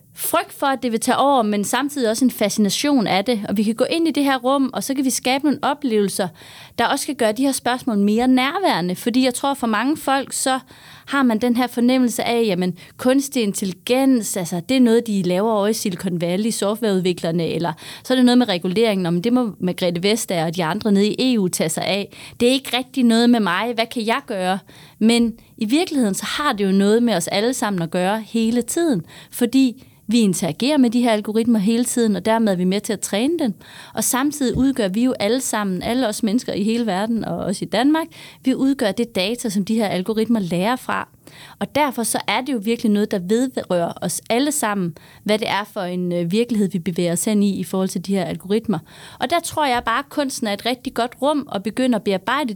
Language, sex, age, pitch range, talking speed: Danish, female, 30-49, 200-260 Hz, 235 wpm